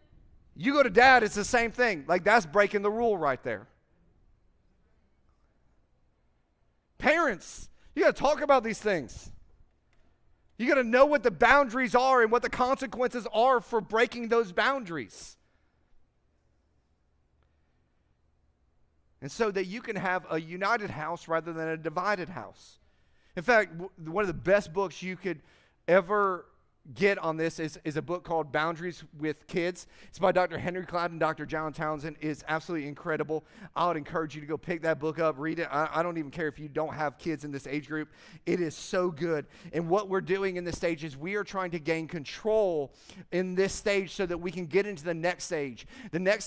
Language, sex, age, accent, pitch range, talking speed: English, male, 40-59, American, 155-210 Hz, 185 wpm